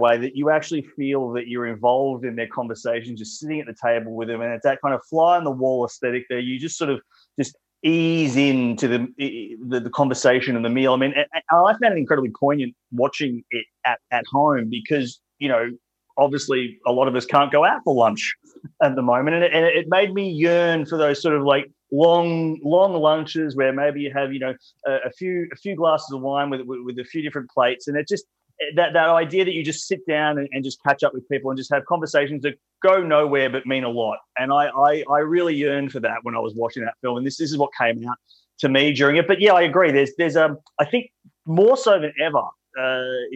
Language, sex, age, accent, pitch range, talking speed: English, male, 30-49, Australian, 125-155 Hz, 240 wpm